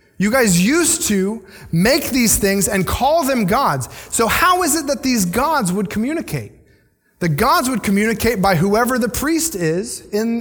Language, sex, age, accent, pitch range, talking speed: English, male, 30-49, American, 170-240 Hz, 175 wpm